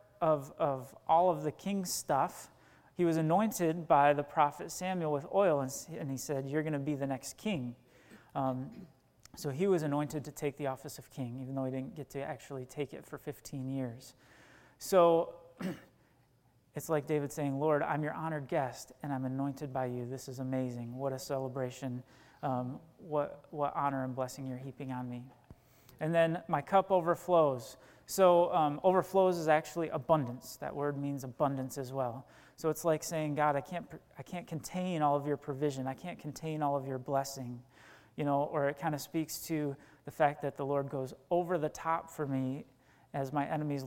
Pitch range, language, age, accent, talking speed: 130-155 Hz, English, 30-49, American, 195 wpm